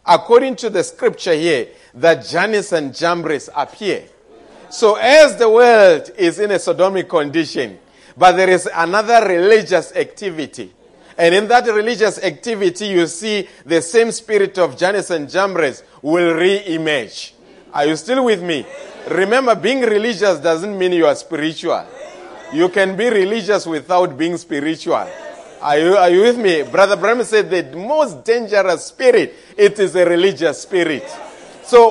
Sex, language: male, English